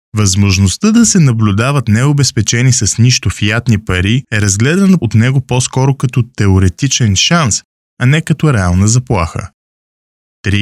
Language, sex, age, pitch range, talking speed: Bulgarian, male, 20-39, 95-130 Hz, 130 wpm